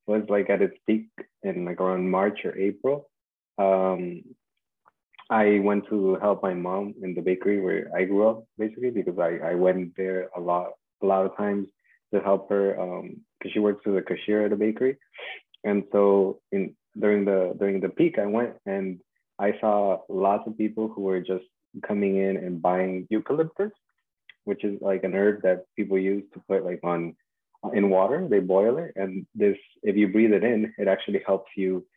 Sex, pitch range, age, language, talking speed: male, 95-105 Hz, 20-39, English, 190 wpm